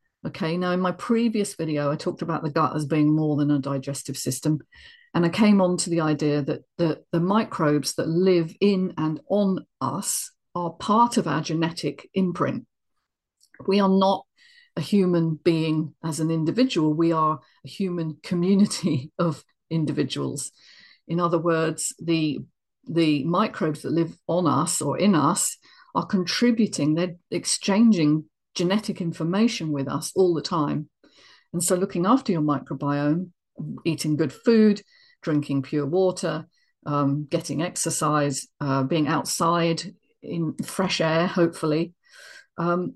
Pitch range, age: 155-190 Hz, 50-69